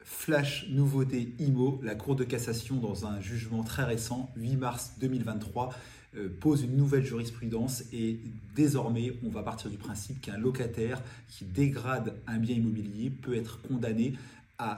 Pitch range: 100-125 Hz